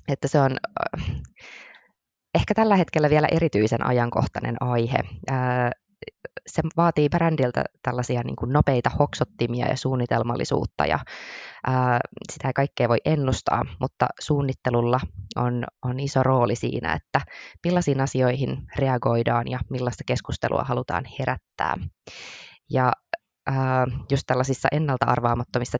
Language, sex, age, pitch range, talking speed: Finnish, female, 20-39, 120-135 Hz, 105 wpm